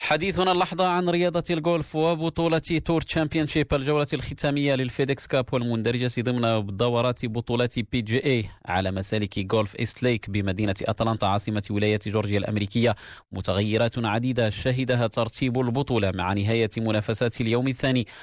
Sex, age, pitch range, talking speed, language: male, 30-49, 105-125 Hz, 130 wpm, Arabic